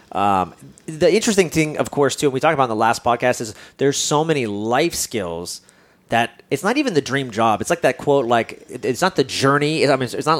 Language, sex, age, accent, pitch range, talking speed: English, male, 30-49, American, 120-160 Hz, 235 wpm